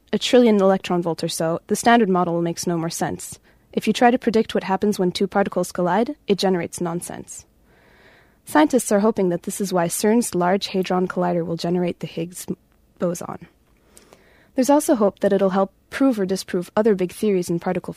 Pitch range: 180-225 Hz